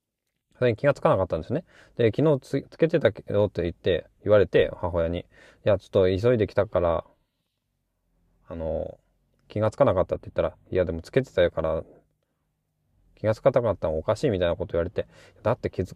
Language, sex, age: Japanese, male, 20-39